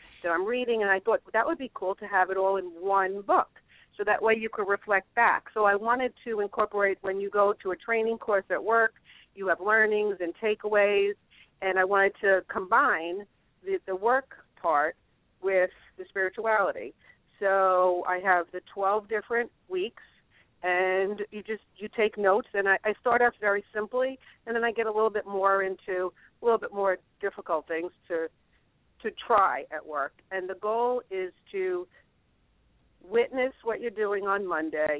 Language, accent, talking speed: English, American, 185 wpm